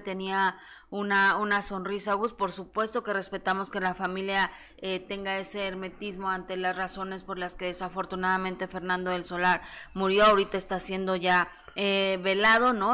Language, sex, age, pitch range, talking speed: Spanish, female, 20-39, 185-205 Hz, 160 wpm